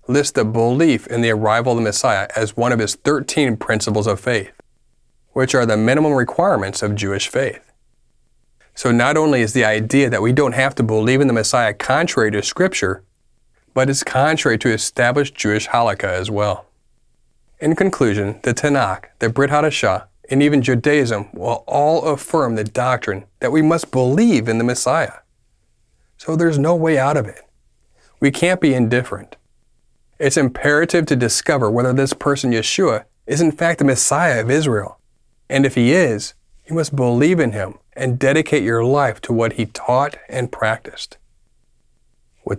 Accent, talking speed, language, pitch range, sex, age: American, 170 wpm, English, 110-145 Hz, male, 30-49